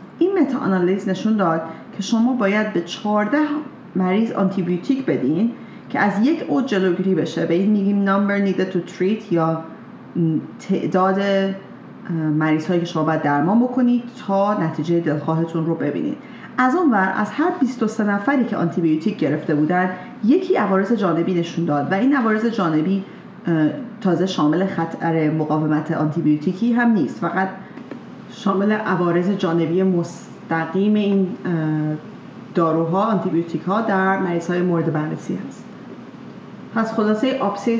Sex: female